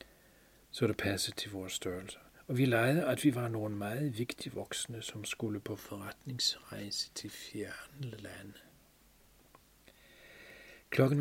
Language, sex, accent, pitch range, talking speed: Danish, male, native, 100-120 Hz, 125 wpm